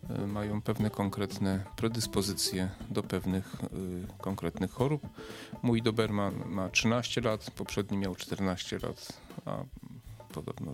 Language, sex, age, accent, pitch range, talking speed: Polish, male, 40-59, native, 100-115 Hz, 110 wpm